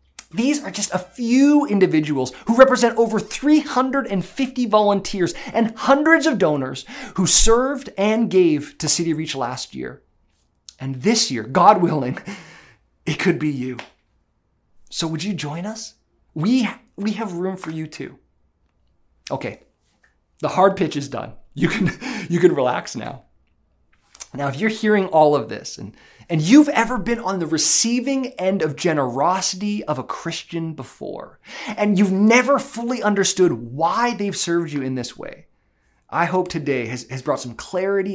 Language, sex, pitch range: English, male, 150-220 Hz